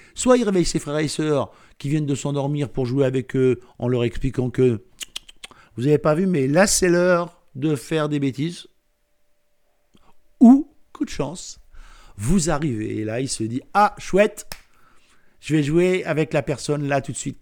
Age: 50-69